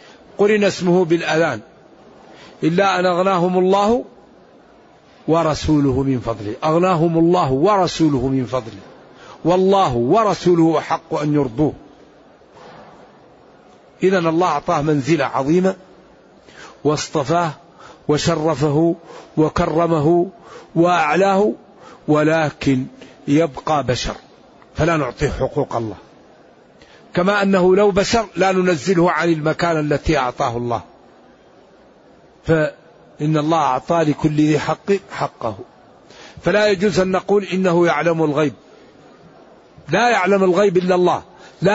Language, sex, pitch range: Arabic, male, 150-190 Hz